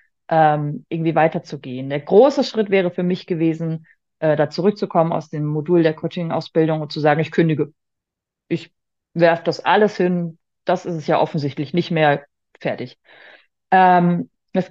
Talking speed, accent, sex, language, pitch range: 145 wpm, German, female, German, 150-180 Hz